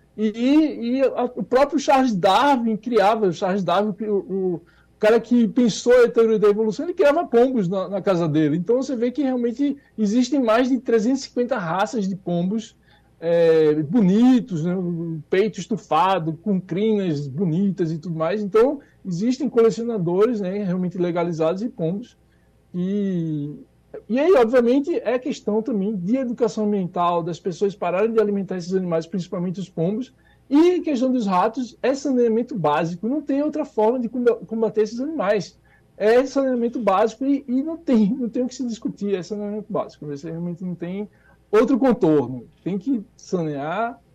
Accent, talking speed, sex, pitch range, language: Brazilian, 160 wpm, male, 175-240 Hz, Portuguese